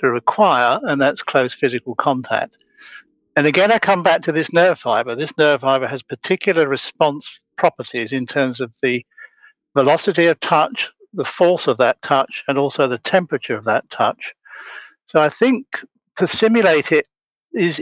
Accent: British